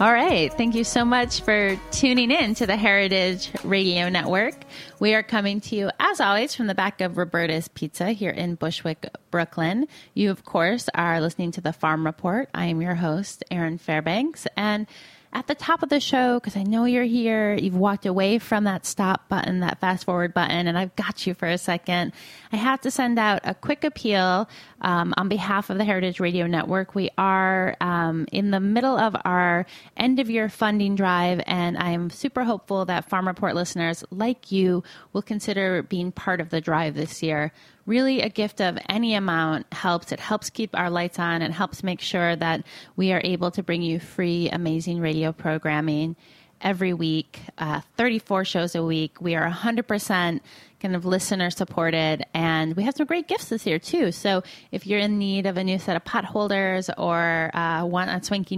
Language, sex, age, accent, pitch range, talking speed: English, female, 30-49, American, 170-210 Hz, 195 wpm